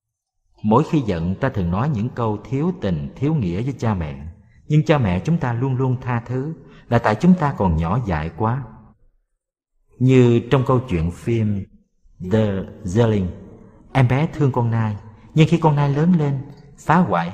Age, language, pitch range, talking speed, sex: 50-69, Vietnamese, 100-145 Hz, 180 wpm, male